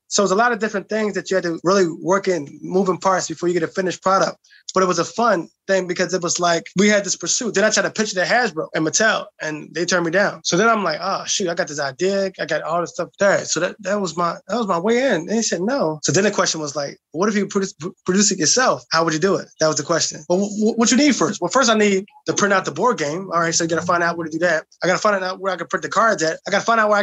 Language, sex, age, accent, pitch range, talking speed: English, male, 20-39, American, 170-200 Hz, 335 wpm